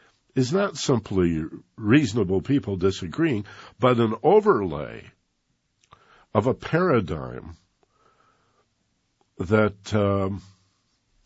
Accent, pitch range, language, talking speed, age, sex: American, 90-115 Hz, English, 75 wpm, 60-79, male